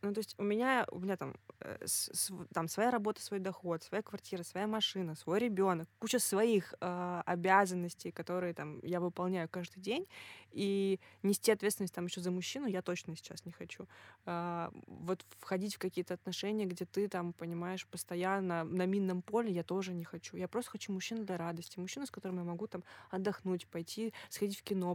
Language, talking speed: Russian, 185 wpm